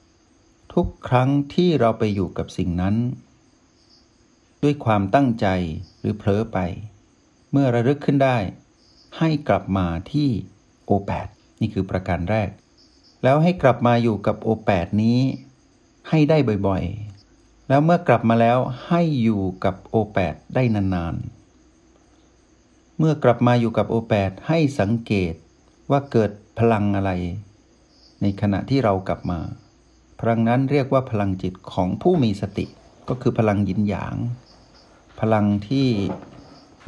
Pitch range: 95-120 Hz